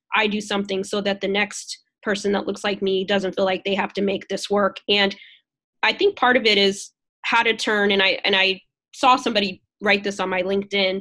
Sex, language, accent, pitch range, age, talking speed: female, English, American, 190-225 Hz, 20-39, 230 wpm